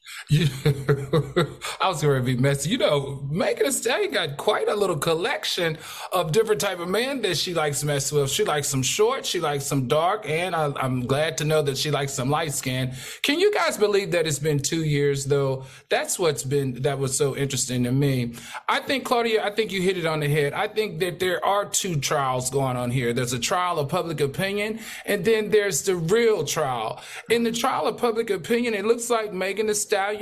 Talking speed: 220 wpm